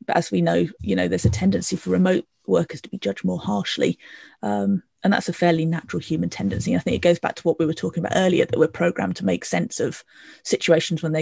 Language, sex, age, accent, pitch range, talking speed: English, female, 30-49, British, 150-185 Hz, 245 wpm